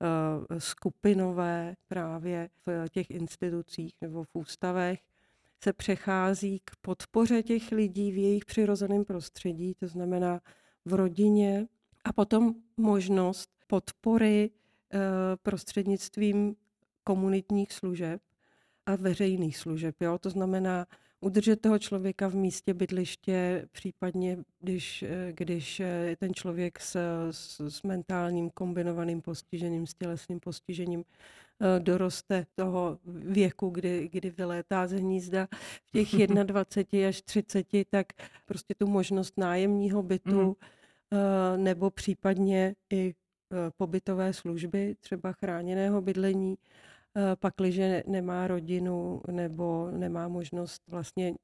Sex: female